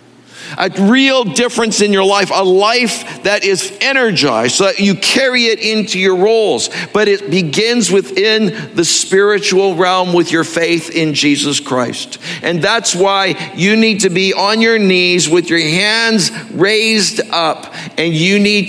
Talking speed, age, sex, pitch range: 160 wpm, 60-79, male, 155-195 Hz